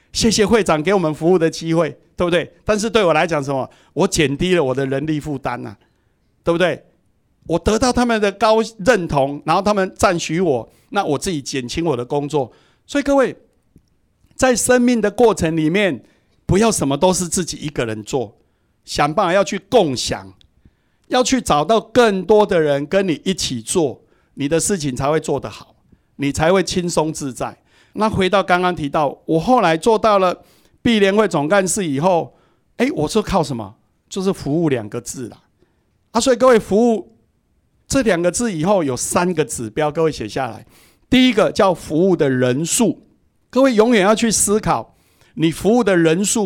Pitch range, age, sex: 140-200 Hz, 60-79, male